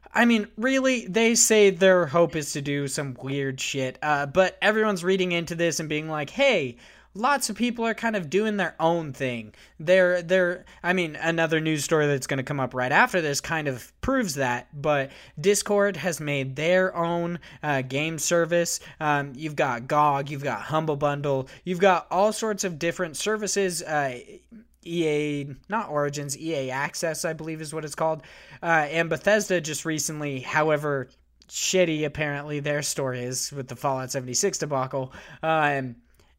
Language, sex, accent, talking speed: English, male, American, 175 wpm